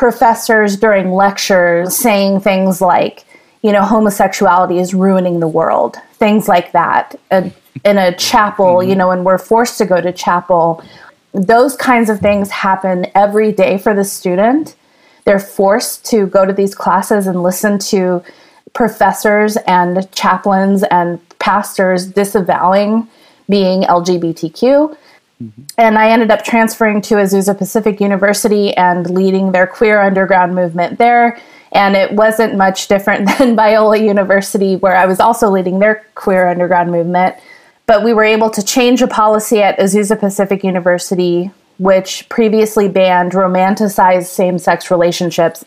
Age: 20-39